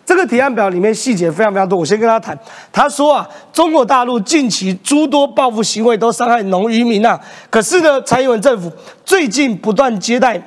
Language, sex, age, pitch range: Chinese, male, 30-49, 185-260 Hz